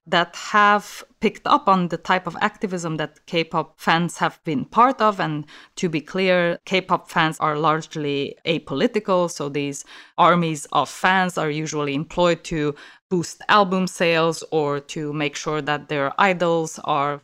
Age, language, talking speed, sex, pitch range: 20-39, English, 155 wpm, female, 155-185 Hz